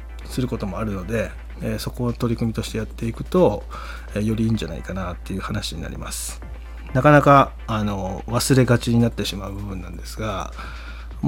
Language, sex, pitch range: Japanese, male, 75-115 Hz